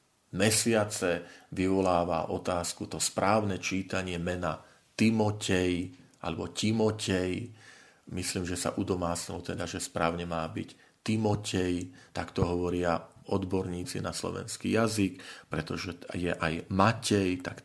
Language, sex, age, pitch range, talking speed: Slovak, male, 40-59, 90-110 Hz, 110 wpm